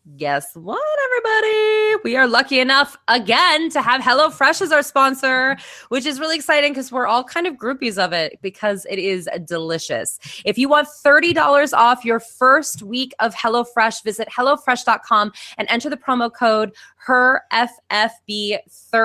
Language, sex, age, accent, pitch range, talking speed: English, female, 20-39, American, 195-265 Hz, 150 wpm